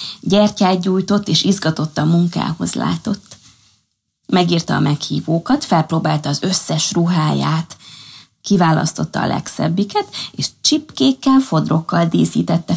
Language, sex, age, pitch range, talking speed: Hungarian, female, 20-39, 150-195 Hz, 100 wpm